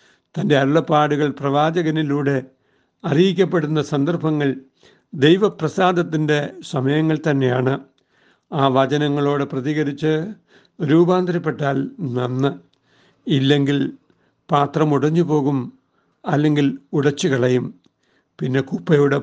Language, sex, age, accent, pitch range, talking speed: Malayalam, male, 60-79, native, 135-160 Hz, 55 wpm